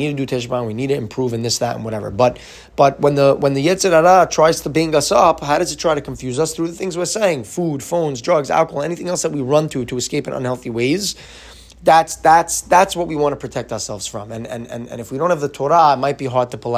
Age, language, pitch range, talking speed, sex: 20-39, English, 125-170 Hz, 285 wpm, male